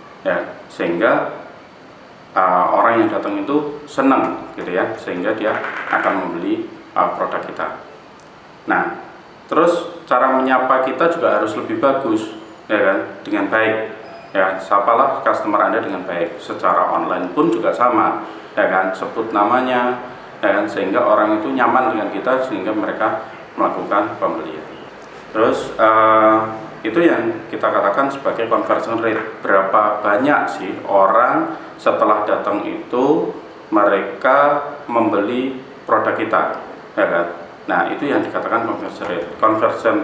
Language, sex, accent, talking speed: Indonesian, male, native, 125 wpm